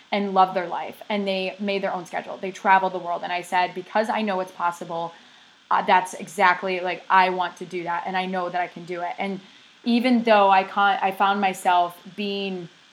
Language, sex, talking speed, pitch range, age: English, female, 225 wpm, 180-205 Hz, 20-39